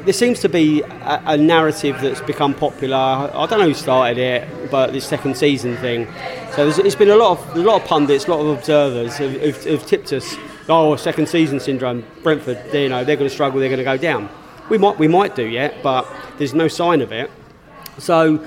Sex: male